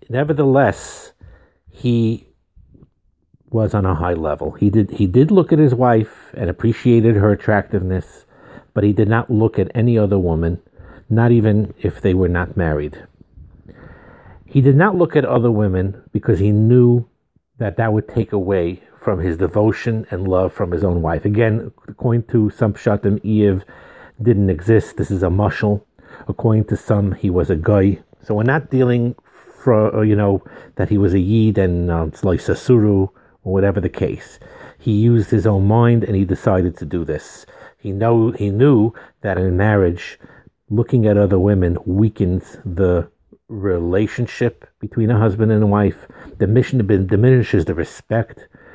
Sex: male